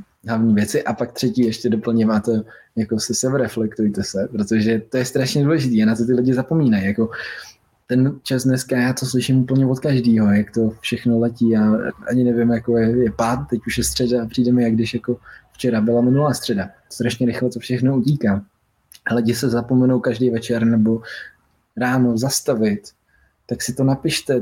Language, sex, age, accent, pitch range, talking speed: Czech, male, 20-39, native, 110-125 Hz, 180 wpm